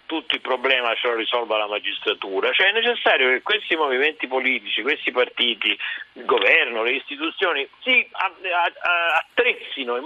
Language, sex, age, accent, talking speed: Italian, male, 50-69, native, 145 wpm